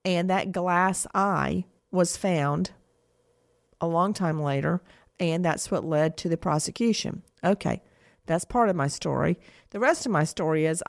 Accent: American